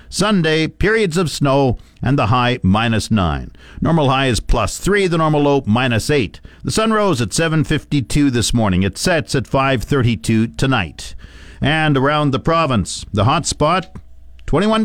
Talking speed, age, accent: 160 wpm, 50-69, American